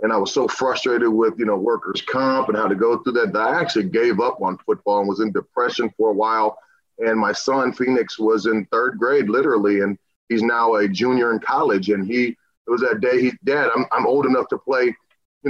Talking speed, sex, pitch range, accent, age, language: 235 wpm, male, 110-140 Hz, American, 30-49, English